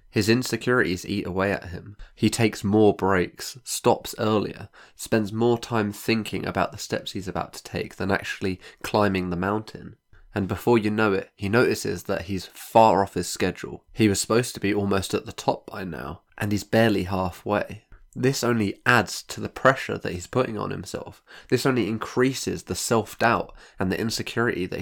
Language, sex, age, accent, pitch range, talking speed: English, male, 20-39, British, 95-115 Hz, 185 wpm